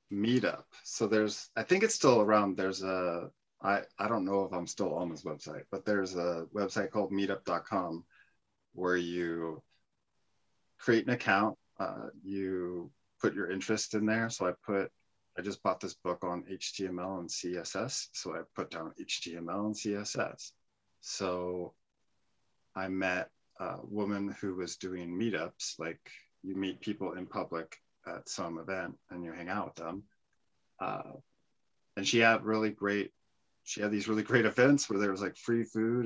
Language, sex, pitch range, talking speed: English, male, 95-110 Hz, 165 wpm